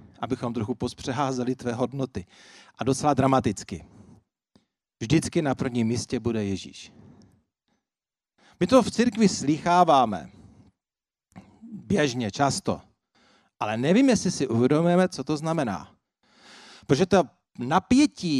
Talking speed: 105 wpm